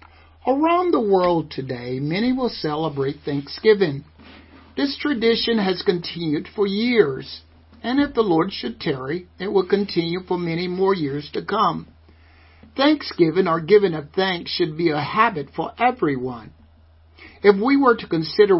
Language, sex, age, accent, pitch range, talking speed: English, male, 60-79, American, 120-200 Hz, 145 wpm